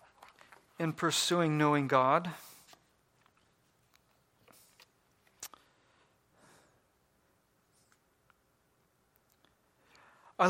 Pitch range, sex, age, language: 150-190 Hz, male, 40-59, English